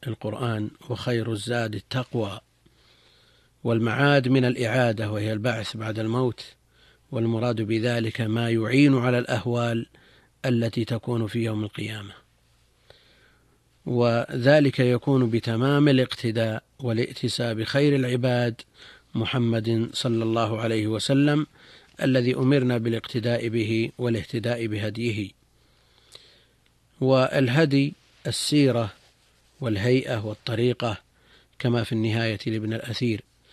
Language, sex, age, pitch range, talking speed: Arabic, male, 50-69, 110-125 Hz, 90 wpm